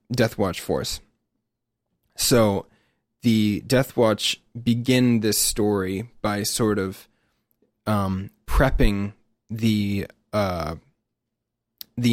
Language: English